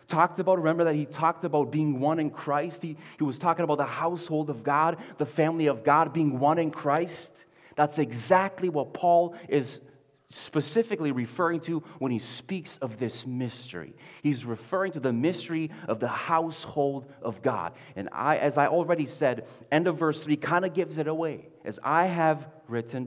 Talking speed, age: 185 wpm, 30-49